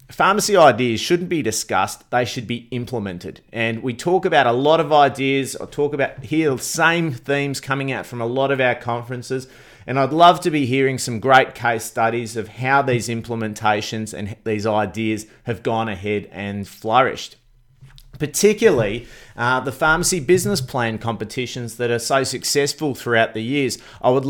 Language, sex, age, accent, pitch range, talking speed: English, male, 30-49, Australian, 115-155 Hz, 175 wpm